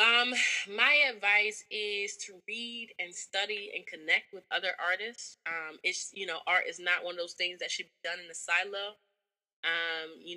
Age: 20-39